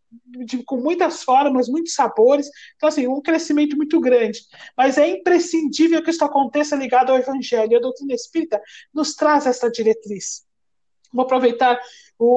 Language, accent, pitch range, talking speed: Portuguese, Brazilian, 240-300 Hz, 155 wpm